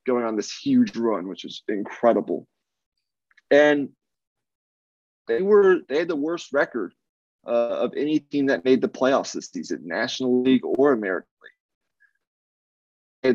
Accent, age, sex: American, 30-49, male